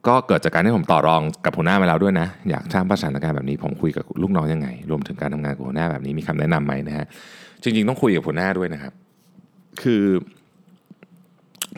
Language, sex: Thai, male